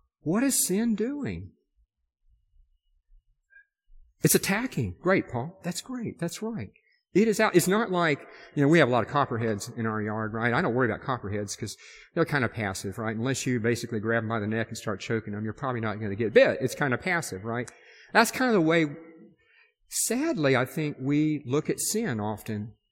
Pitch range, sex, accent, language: 110-170 Hz, male, American, English